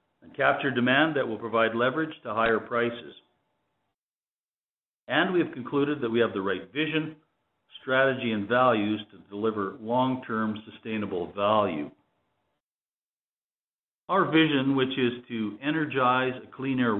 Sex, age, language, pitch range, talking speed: male, 50-69, English, 110-140 Hz, 125 wpm